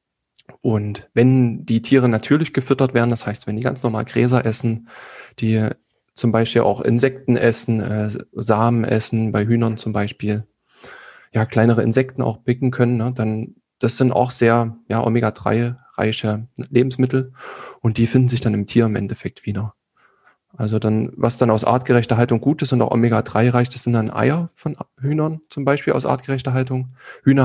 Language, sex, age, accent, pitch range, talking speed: German, male, 20-39, German, 110-125 Hz, 170 wpm